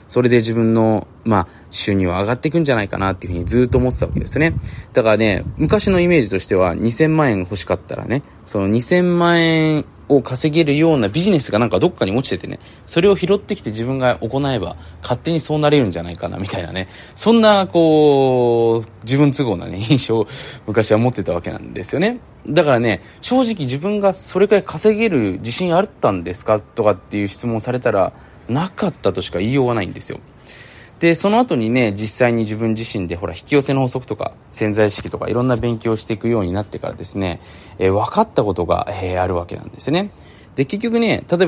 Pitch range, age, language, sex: 100-145 Hz, 20-39, Japanese, male